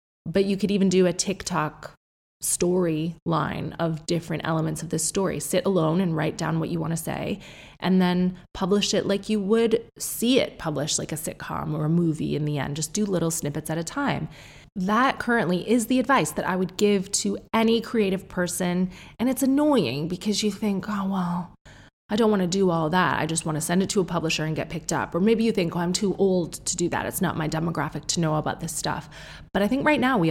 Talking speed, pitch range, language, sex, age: 230 wpm, 155-200 Hz, English, female, 20-39